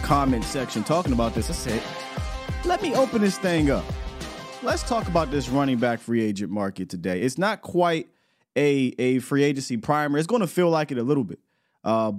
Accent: American